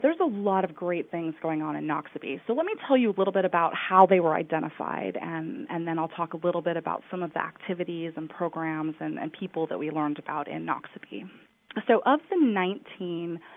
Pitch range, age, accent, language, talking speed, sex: 165-200 Hz, 20-39, American, English, 225 wpm, female